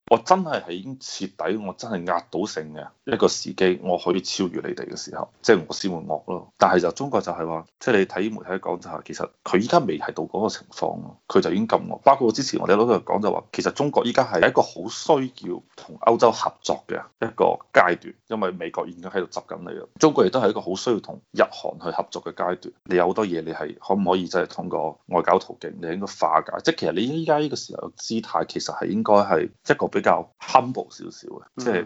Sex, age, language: male, 20-39, Chinese